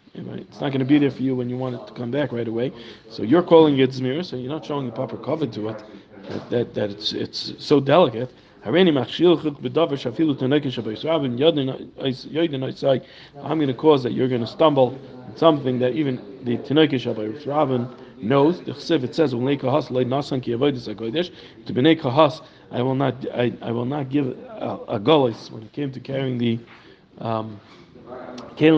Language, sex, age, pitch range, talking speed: English, male, 40-59, 120-150 Hz, 140 wpm